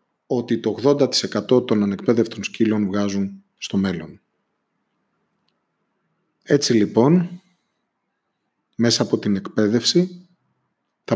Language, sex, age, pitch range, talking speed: Greek, male, 30-49, 105-145 Hz, 85 wpm